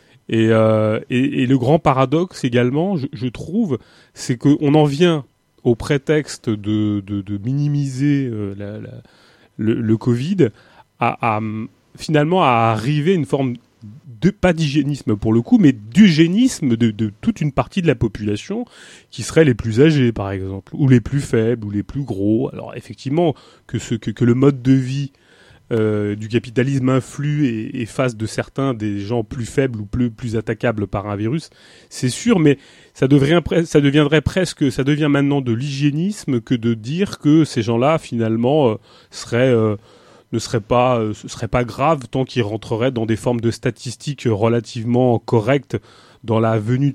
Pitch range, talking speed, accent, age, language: 115-145 Hz, 180 wpm, French, 30-49, French